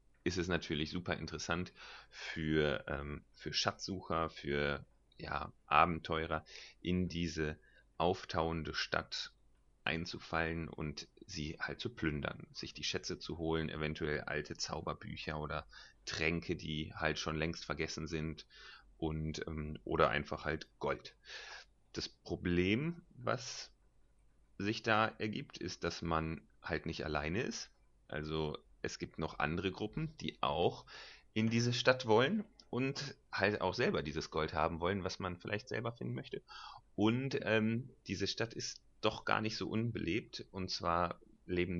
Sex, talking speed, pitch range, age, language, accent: male, 140 wpm, 80-95 Hz, 30-49, German, German